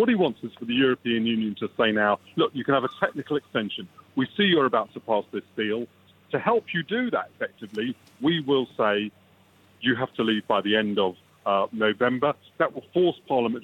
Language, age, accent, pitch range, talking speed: English, 40-59, British, 110-130 Hz, 215 wpm